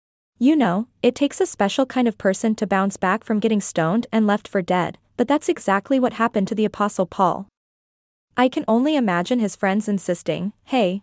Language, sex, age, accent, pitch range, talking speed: English, female, 20-39, American, 200-245 Hz, 195 wpm